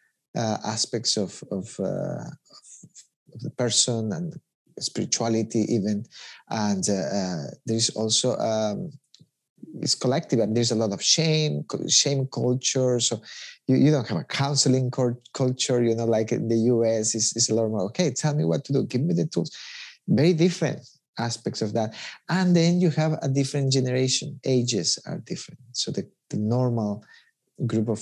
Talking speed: 165 wpm